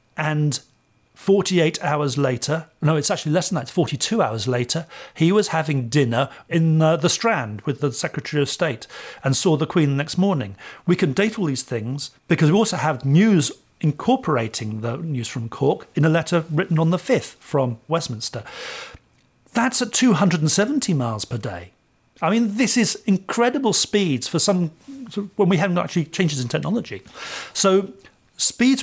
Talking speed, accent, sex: 170 wpm, British, male